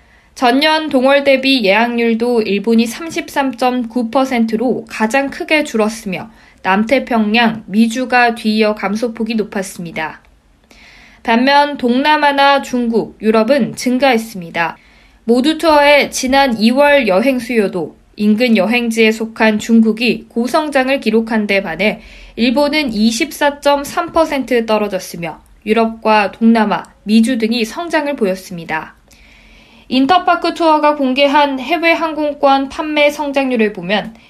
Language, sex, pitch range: Korean, female, 220-285 Hz